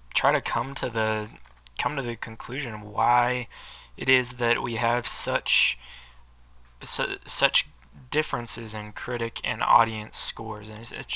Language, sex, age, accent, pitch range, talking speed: English, male, 20-39, American, 110-135 Hz, 145 wpm